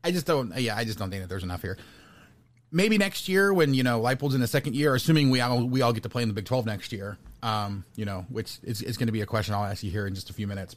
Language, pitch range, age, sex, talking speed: English, 110-145 Hz, 30-49, male, 320 wpm